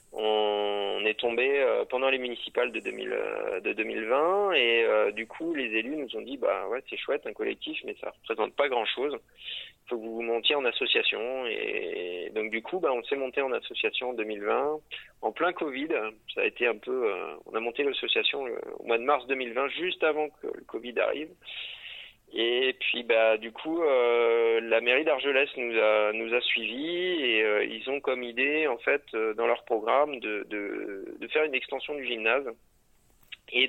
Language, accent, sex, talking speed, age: French, French, male, 190 wpm, 30-49